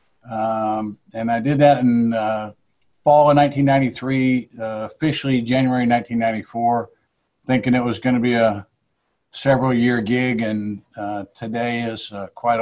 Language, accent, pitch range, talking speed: English, American, 110-135 Hz, 145 wpm